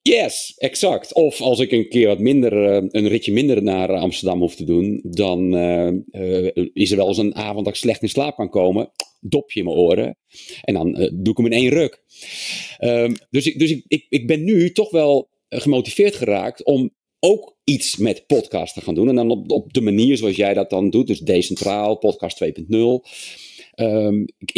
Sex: male